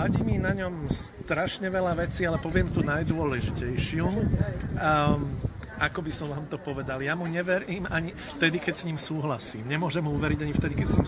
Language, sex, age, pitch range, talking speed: Slovak, male, 50-69, 135-165 Hz, 190 wpm